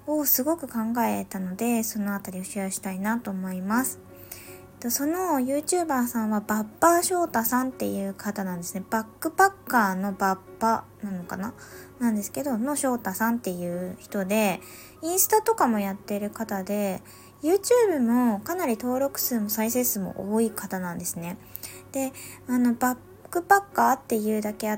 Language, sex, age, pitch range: Japanese, female, 20-39, 200-275 Hz